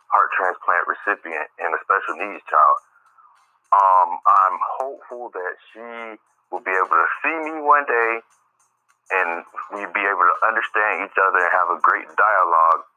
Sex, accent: male, American